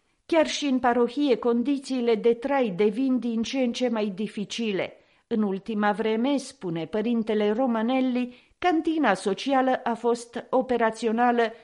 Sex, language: female, Romanian